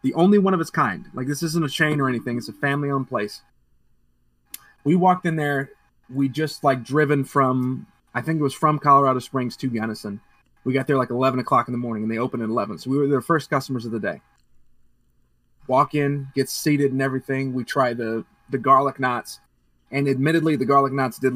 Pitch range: 120-145 Hz